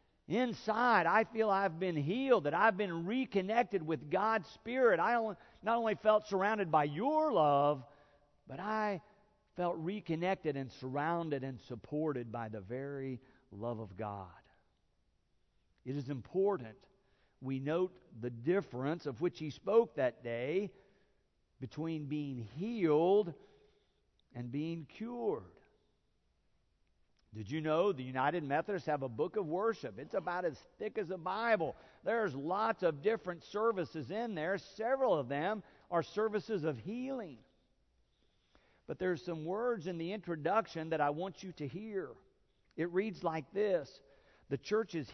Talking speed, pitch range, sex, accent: 140 wpm, 145-210 Hz, male, American